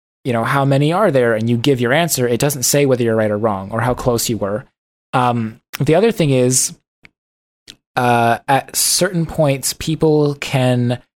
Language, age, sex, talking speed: English, 20-39, male, 190 wpm